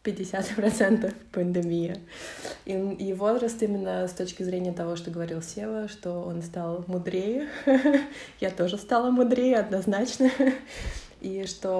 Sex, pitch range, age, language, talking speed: female, 170-190 Hz, 20-39, Russian, 120 wpm